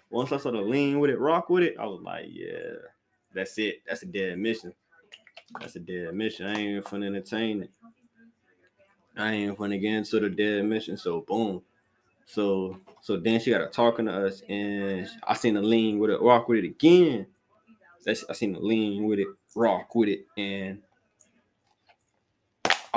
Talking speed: 185 wpm